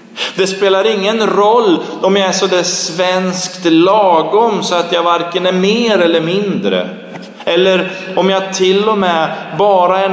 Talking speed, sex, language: 155 wpm, male, Swedish